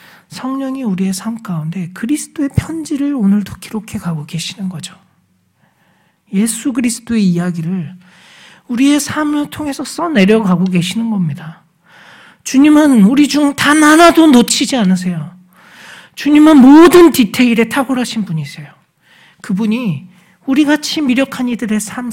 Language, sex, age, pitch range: Korean, male, 40-59, 165-235 Hz